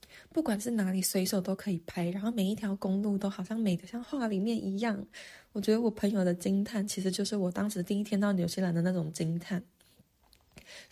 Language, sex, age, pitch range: Chinese, female, 20-39, 185-220 Hz